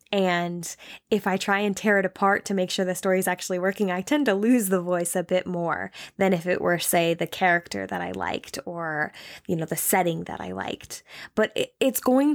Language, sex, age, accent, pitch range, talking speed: English, female, 10-29, American, 185-225 Hz, 225 wpm